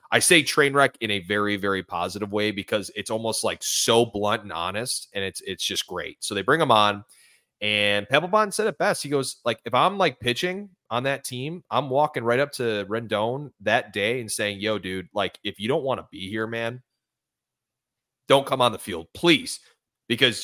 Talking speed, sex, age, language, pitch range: 210 wpm, male, 30-49, English, 105-135 Hz